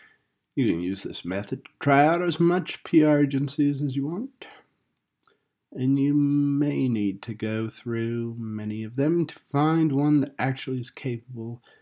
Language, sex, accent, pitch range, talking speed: English, male, American, 110-150 Hz, 160 wpm